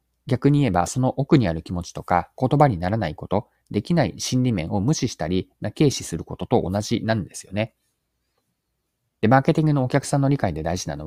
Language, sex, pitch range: Japanese, male, 95-135 Hz